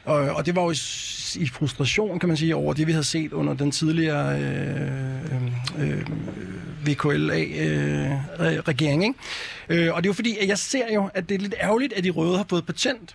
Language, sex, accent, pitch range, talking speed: Danish, male, native, 145-190 Hz, 180 wpm